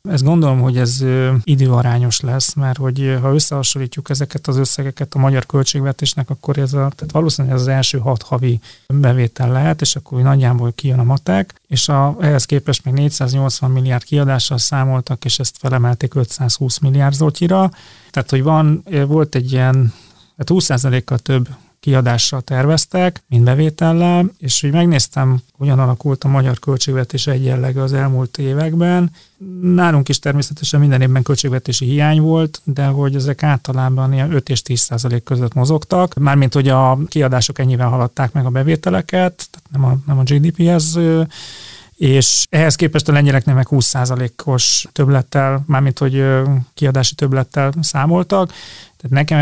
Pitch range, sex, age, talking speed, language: 130-145 Hz, male, 30-49, 145 wpm, Hungarian